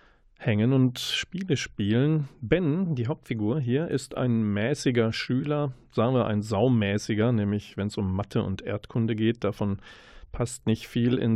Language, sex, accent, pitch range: German, male, German, 105-135 Hz